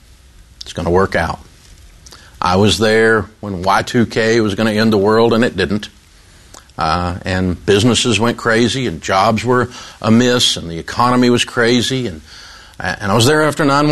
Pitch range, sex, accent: 90-115 Hz, male, American